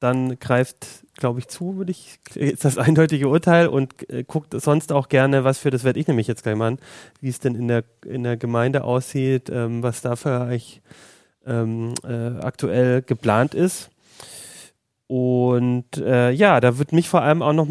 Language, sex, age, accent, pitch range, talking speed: German, male, 30-49, German, 125-145 Hz, 185 wpm